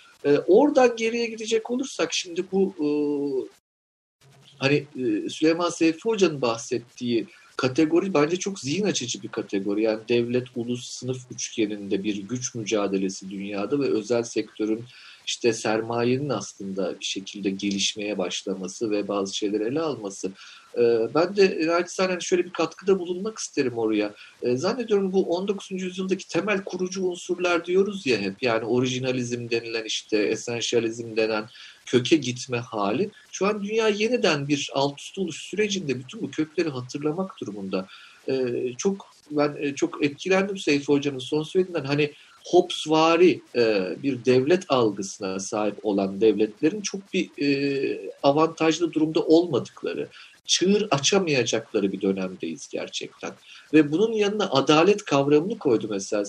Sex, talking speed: male, 130 wpm